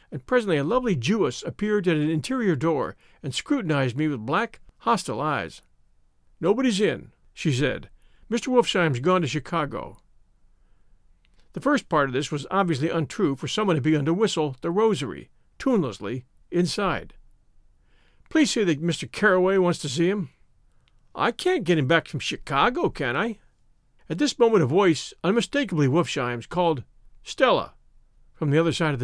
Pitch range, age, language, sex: 150-225 Hz, 50-69, English, male